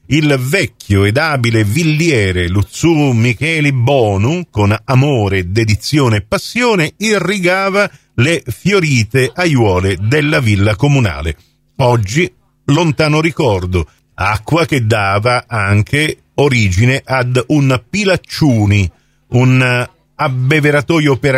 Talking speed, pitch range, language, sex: 95 wpm, 110-150 Hz, Italian, male